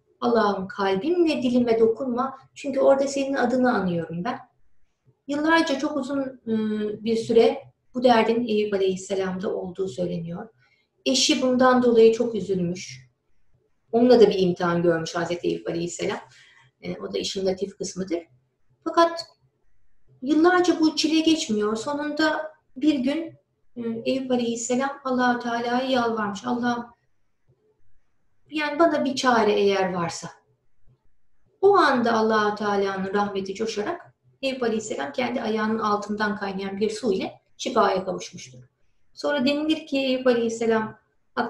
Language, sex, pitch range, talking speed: Turkish, female, 185-260 Hz, 120 wpm